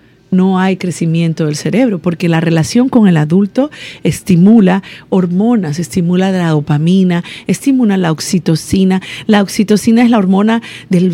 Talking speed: 135 wpm